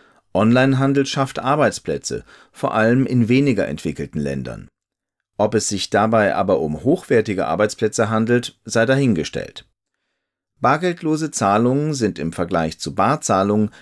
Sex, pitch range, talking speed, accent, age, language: male, 95-135 Hz, 115 wpm, German, 40-59, German